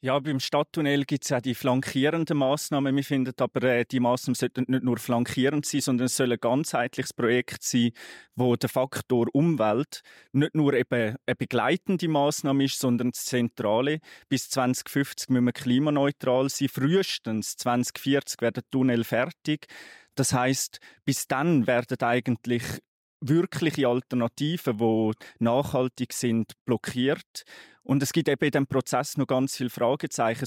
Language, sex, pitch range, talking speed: German, male, 125-145 Hz, 145 wpm